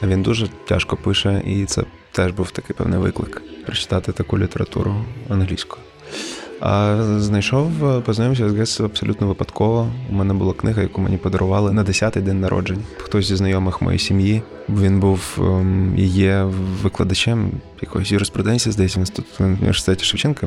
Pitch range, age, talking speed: 95-110 Hz, 20-39, 145 wpm